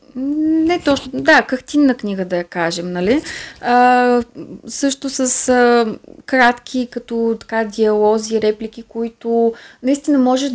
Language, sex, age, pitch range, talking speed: Bulgarian, female, 20-39, 210-250 Hz, 120 wpm